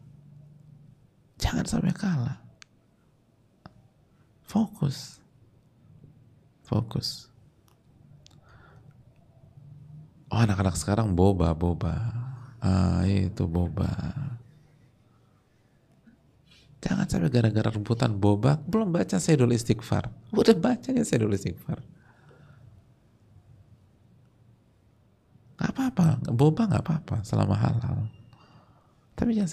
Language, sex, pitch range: Indonesian, male, 100-140 Hz